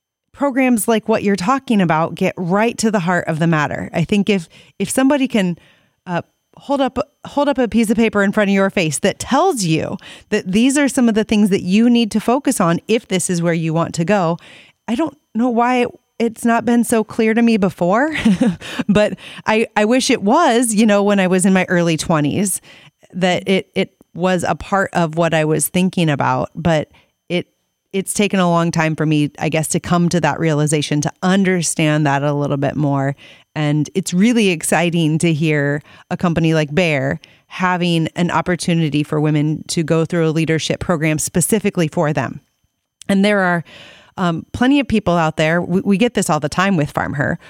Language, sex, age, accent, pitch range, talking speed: English, female, 30-49, American, 160-210 Hz, 205 wpm